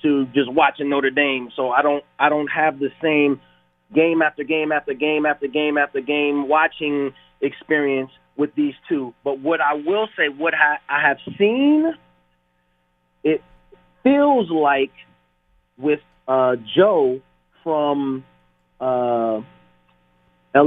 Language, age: English, 30-49